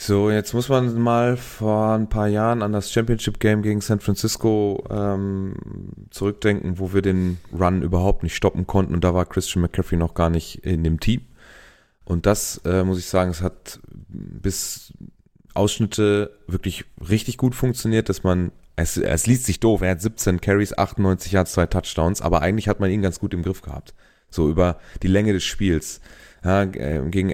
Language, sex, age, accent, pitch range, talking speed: German, male, 30-49, German, 90-105 Hz, 185 wpm